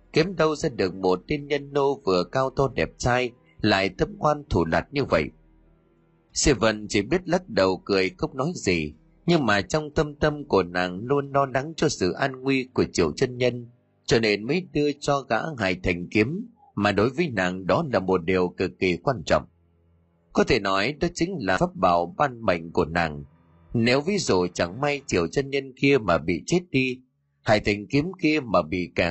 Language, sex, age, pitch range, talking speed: Vietnamese, male, 30-49, 90-150 Hz, 210 wpm